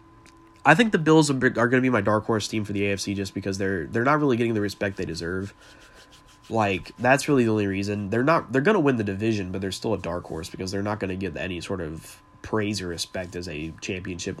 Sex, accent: male, American